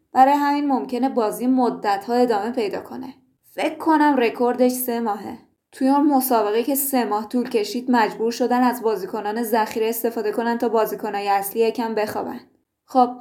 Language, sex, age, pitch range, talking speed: Persian, female, 20-39, 220-250 Hz, 160 wpm